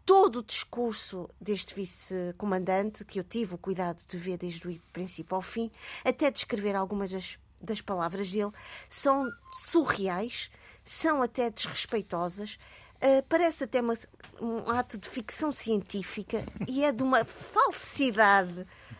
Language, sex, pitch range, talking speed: Portuguese, female, 195-240 Hz, 140 wpm